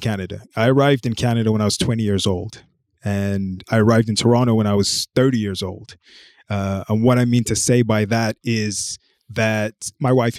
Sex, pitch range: male, 105-120 Hz